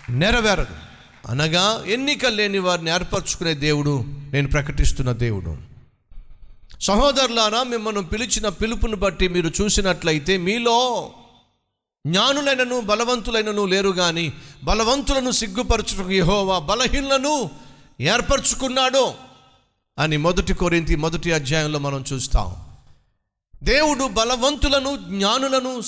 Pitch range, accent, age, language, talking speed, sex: 150-240 Hz, native, 50-69, Telugu, 85 wpm, male